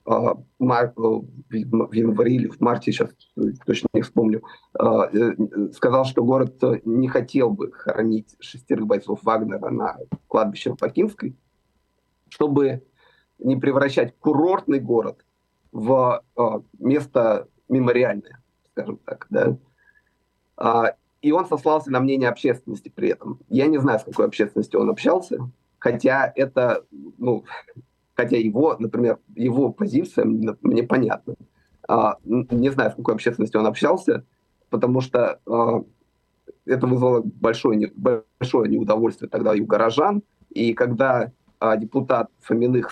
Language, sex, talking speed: Russian, male, 115 wpm